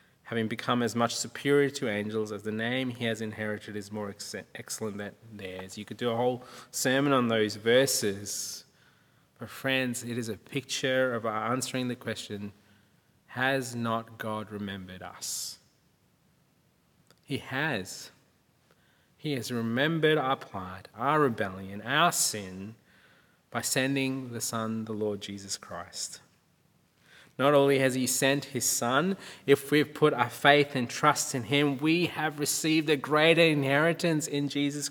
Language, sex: English, male